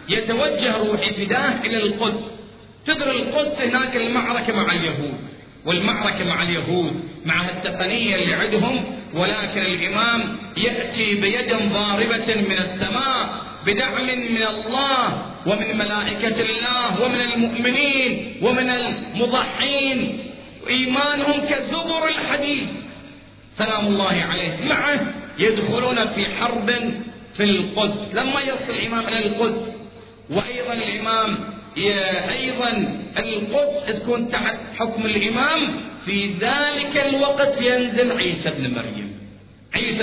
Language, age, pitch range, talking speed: Arabic, 40-59, 195-250 Hz, 100 wpm